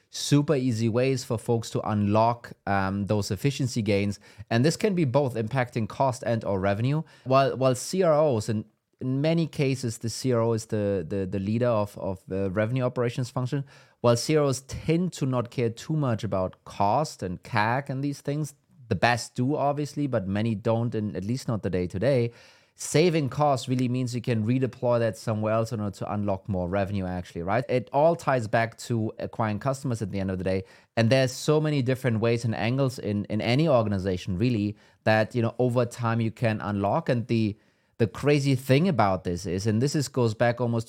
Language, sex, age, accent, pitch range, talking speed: English, male, 30-49, German, 110-135 Hz, 200 wpm